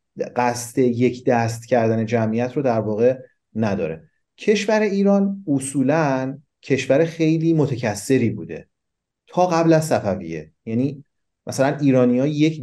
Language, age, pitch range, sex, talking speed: Persian, 30-49, 115-145 Hz, male, 120 wpm